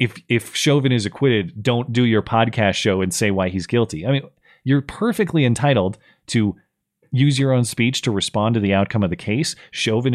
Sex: male